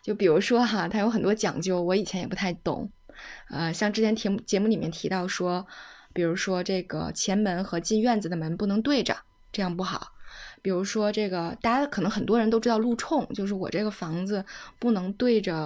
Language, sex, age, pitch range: Chinese, female, 20-39, 180-220 Hz